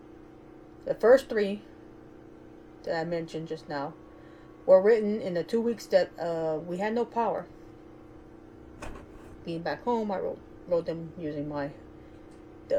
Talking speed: 140 wpm